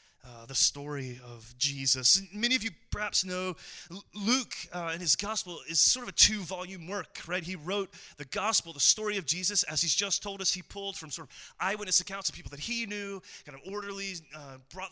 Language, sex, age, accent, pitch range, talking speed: English, male, 30-49, American, 130-185 Hz, 210 wpm